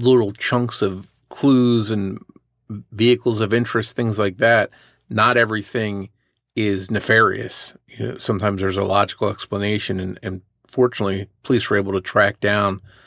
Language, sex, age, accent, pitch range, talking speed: English, male, 40-59, American, 100-115 Hz, 135 wpm